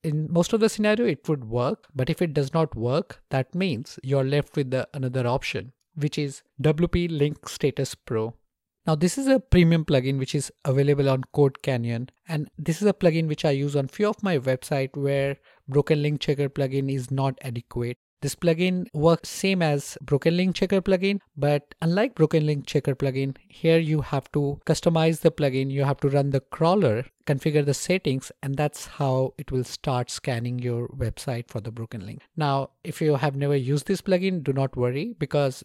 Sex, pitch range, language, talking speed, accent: male, 135-165 Hz, English, 195 wpm, Indian